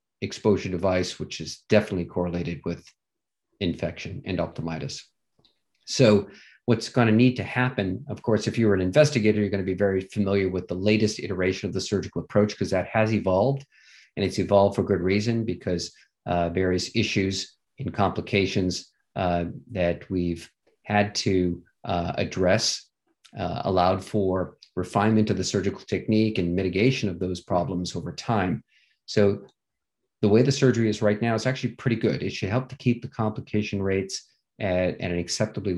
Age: 40-59